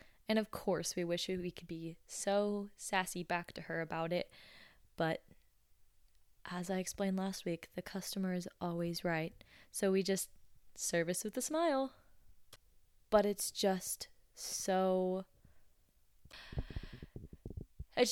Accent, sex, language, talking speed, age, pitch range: American, female, English, 125 wpm, 20-39, 150-190 Hz